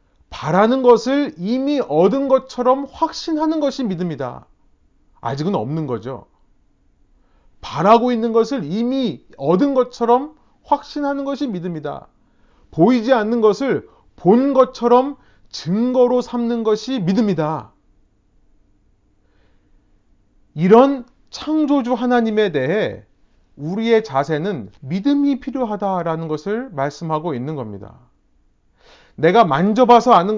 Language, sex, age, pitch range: Korean, male, 30-49, 165-250 Hz